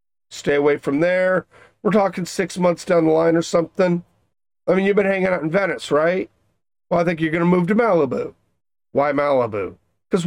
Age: 40-59